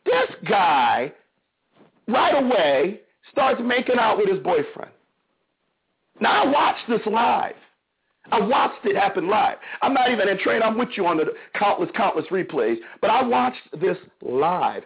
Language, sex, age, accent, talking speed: English, male, 40-59, American, 155 wpm